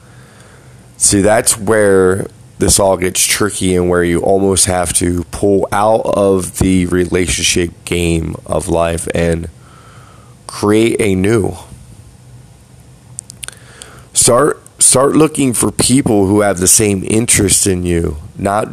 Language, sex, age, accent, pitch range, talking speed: English, male, 30-49, American, 90-110 Hz, 120 wpm